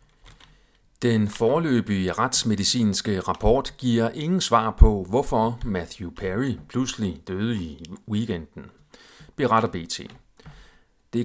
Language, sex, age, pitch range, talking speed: Danish, male, 40-59, 95-125 Hz, 95 wpm